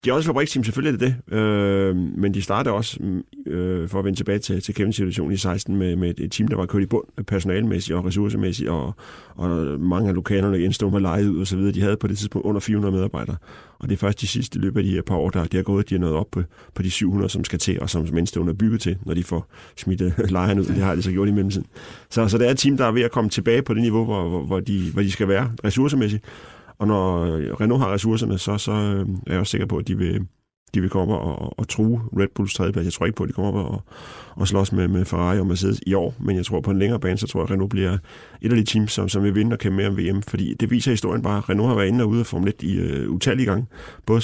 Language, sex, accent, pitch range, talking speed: Danish, male, native, 90-110 Hz, 290 wpm